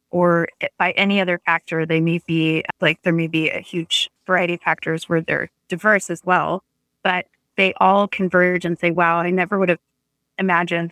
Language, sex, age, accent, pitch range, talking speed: English, female, 20-39, American, 165-185 Hz, 185 wpm